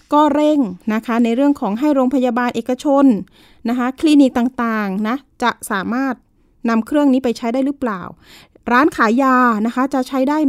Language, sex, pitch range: Thai, female, 205-260 Hz